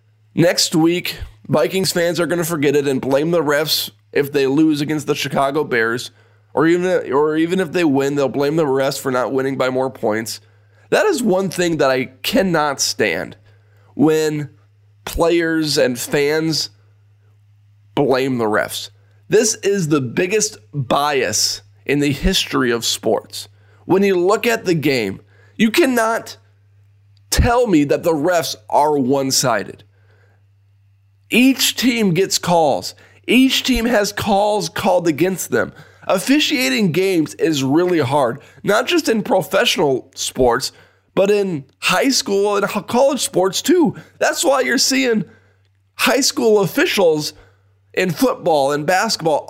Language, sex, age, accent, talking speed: English, male, 20-39, American, 140 wpm